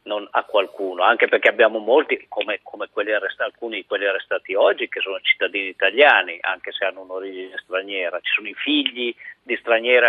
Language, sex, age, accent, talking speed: Italian, male, 50-69, native, 185 wpm